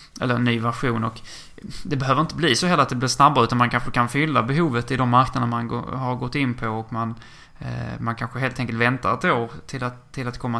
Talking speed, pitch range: 255 wpm, 115-130 Hz